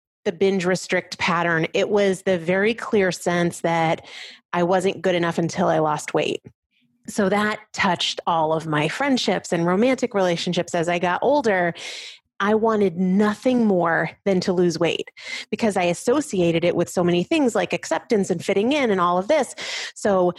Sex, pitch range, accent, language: female, 170-225 Hz, American, English